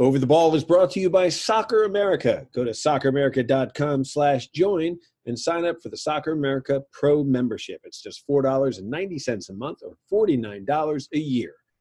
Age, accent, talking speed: 40-59, American, 160 wpm